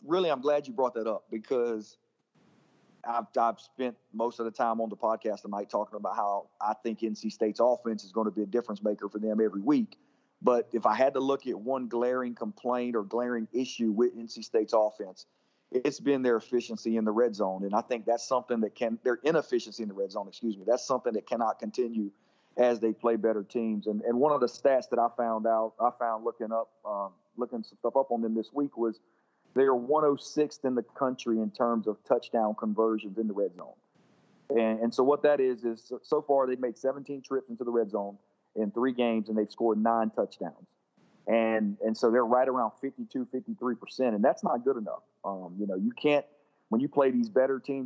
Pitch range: 110-130 Hz